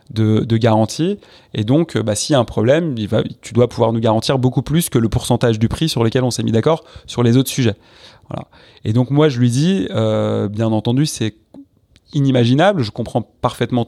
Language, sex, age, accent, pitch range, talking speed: English, male, 30-49, French, 110-135 Hz, 215 wpm